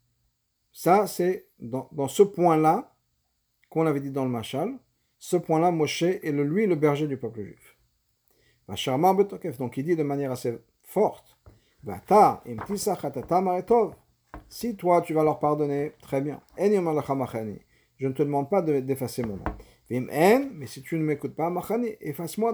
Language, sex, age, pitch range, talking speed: French, male, 50-69, 130-180 Hz, 145 wpm